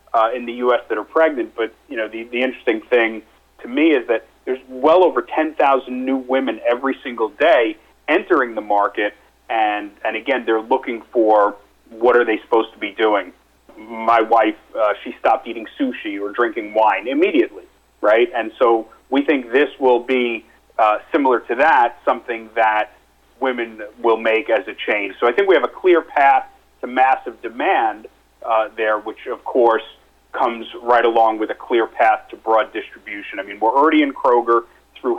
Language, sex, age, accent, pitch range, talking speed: English, male, 40-59, American, 110-135 Hz, 185 wpm